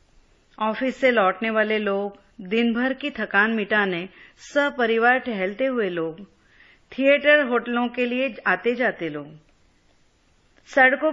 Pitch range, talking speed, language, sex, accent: 190-255 Hz, 120 wpm, Hindi, female, native